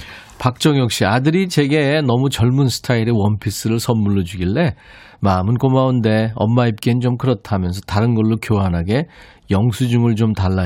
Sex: male